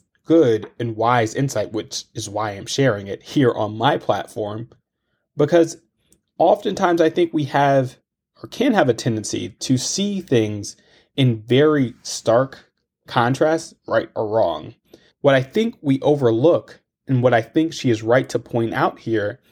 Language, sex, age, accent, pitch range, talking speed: English, male, 30-49, American, 115-165 Hz, 155 wpm